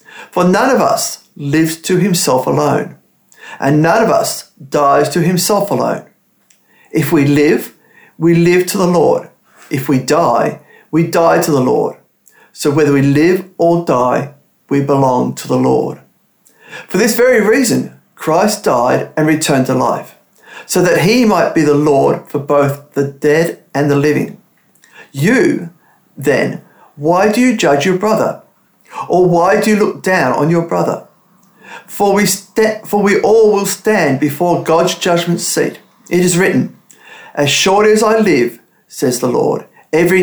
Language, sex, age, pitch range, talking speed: English, male, 50-69, 150-195 Hz, 160 wpm